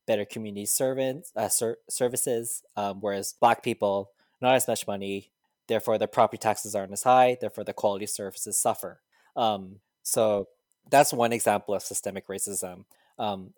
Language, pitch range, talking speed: English, 100-115 Hz, 150 wpm